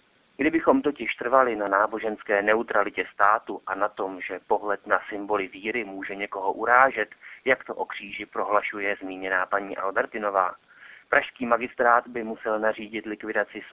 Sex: male